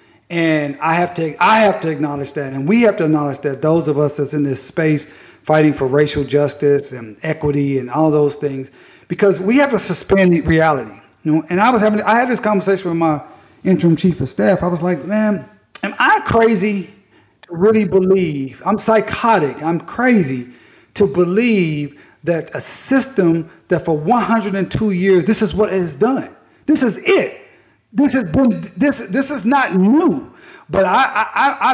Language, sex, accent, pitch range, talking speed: English, male, American, 155-215 Hz, 185 wpm